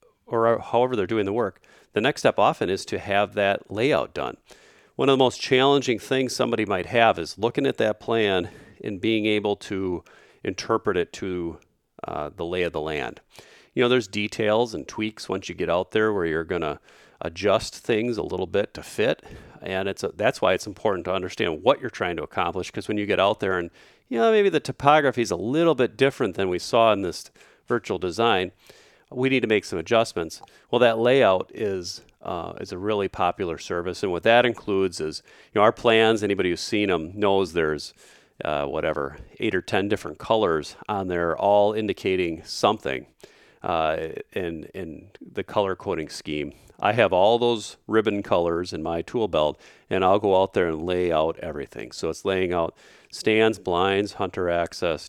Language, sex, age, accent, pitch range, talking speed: English, male, 40-59, American, 90-115 Hz, 195 wpm